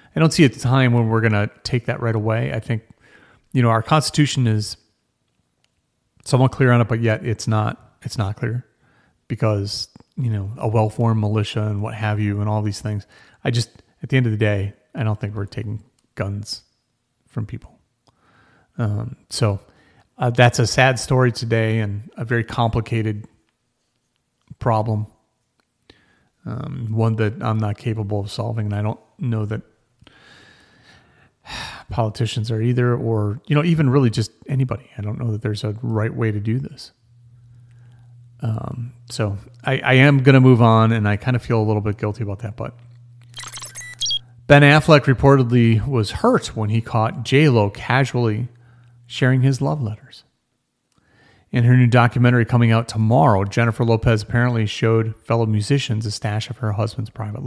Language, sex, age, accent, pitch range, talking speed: English, male, 40-59, American, 110-125 Hz, 170 wpm